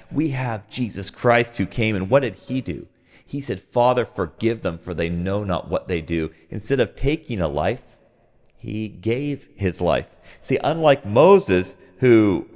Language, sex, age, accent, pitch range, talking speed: English, male, 30-49, American, 85-110 Hz, 170 wpm